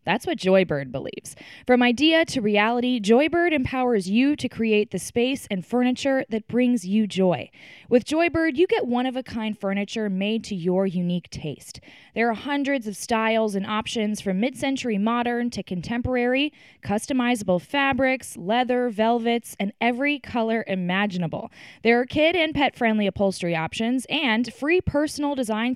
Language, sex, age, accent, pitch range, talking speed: English, female, 10-29, American, 200-260 Hz, 145 wpm